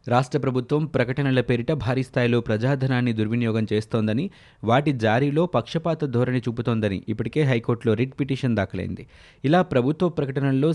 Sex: male